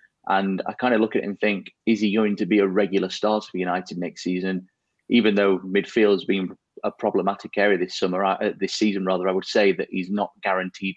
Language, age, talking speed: English, 30-49, 230 wpm